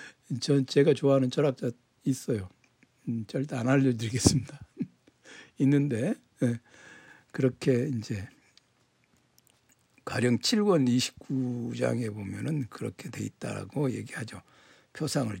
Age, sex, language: 60-79, male, Korean